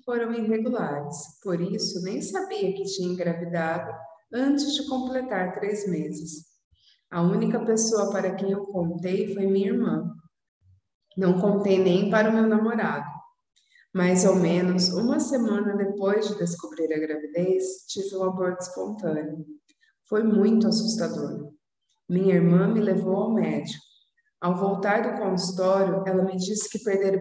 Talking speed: 140 wpm